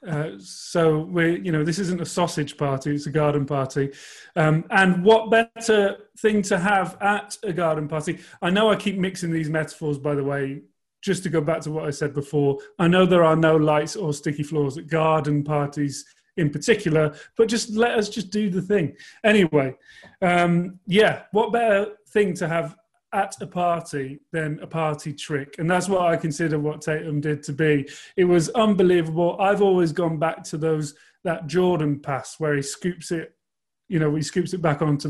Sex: male